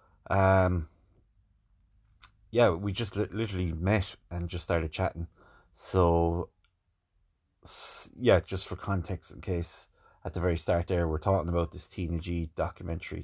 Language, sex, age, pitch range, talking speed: English, male, 30-49, 85-95 Hz, 130 wpm